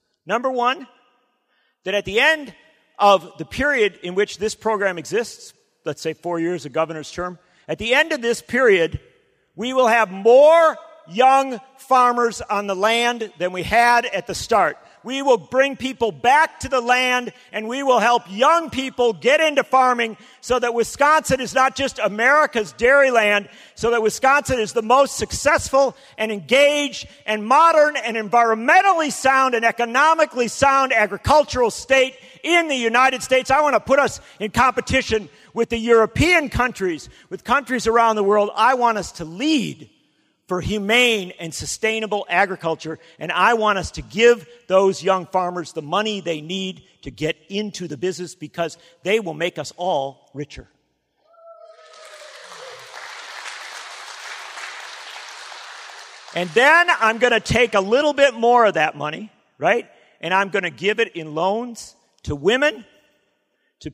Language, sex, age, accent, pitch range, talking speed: English, male, 50-69, American, 195-265 Hz, 155 wpm